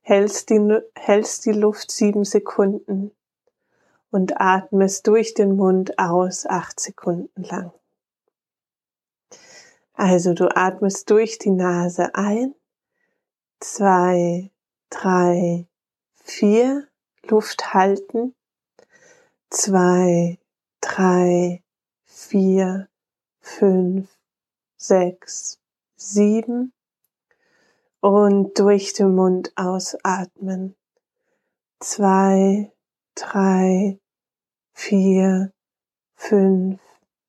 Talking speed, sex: 70 wpm, female